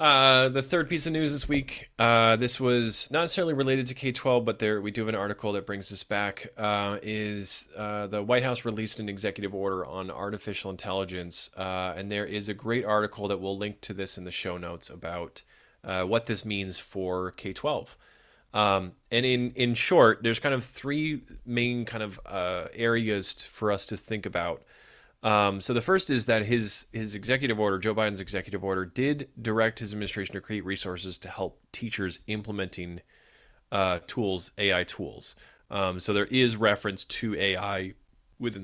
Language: English